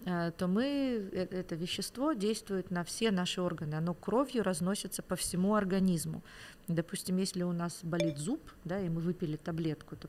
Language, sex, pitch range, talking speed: Ukrainian, female, 170-205 Hz, 160 wpm